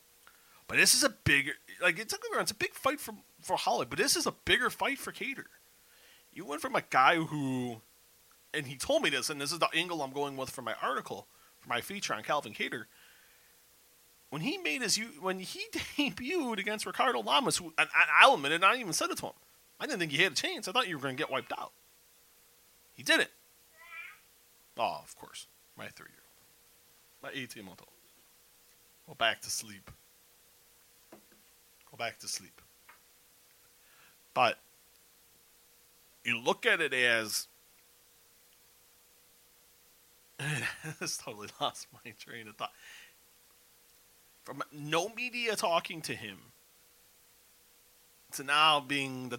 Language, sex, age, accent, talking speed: English, male, 30-49, American, 155 wpm